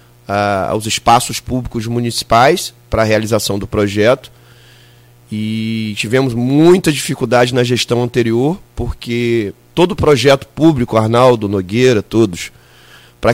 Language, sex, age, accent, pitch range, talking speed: Portuguese, male, 30-49, Brazilian, 115-150 Hz, 110 wpm